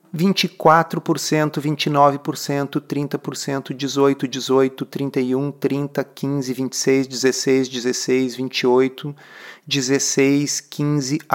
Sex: male